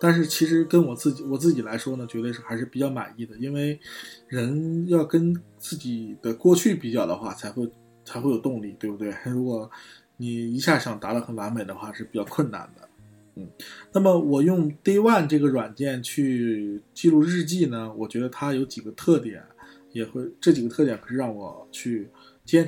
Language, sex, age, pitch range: Chinese, male, 20-39, 115-150 Hz